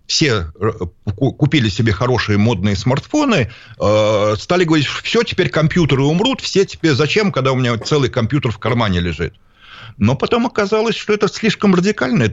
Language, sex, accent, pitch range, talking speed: Russian, male, native, 100-145 Hz, 145 wpm